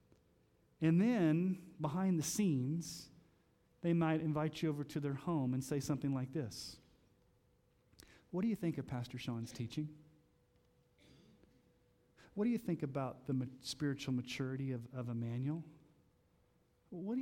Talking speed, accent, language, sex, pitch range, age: 135 wpm, American, English, male, 130-170 Hz, 40-59